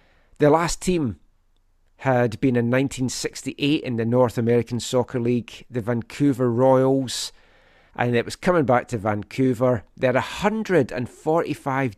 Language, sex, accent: English, male, British